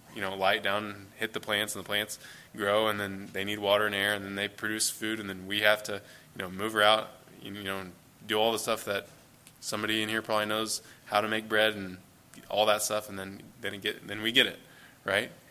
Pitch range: 100-120 Hz